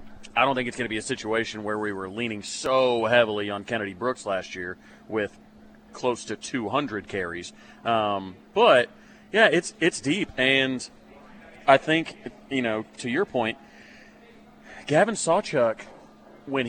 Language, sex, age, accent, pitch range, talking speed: English, male, 30-49, American, 110-135 Hz, 155 wpm